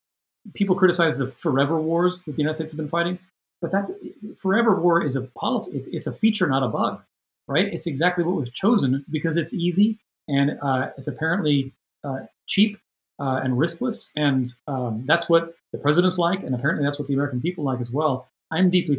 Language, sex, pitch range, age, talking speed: English, male, 130-170 Hz, 40-59, 200 wpm